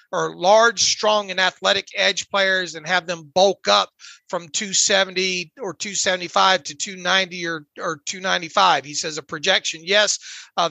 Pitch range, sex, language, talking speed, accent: 180-210 Hz, male, English, 150 wpm, American